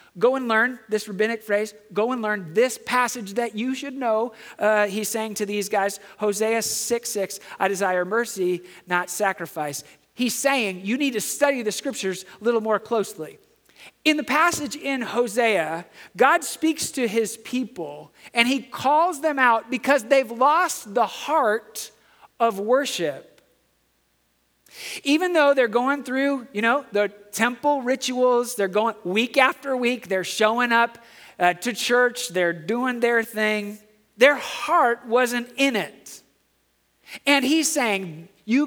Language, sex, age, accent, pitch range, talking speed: English, male, 40-59, American, 205-275 Hz, 150 wpm